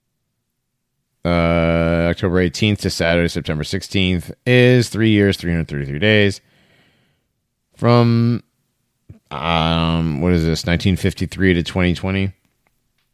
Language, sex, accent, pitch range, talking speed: English, male, American, 90-130 Hz, 90 wpm